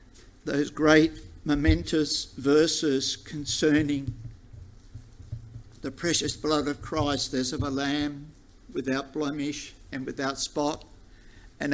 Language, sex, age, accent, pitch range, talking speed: English, male, 50-69, Australian, 125-160 Hz, 100 wpm